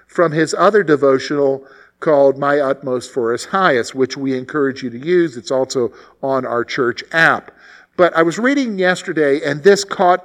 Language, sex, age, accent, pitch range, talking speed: English, male, 50-69, American, 130-180 Hz, 175 wpm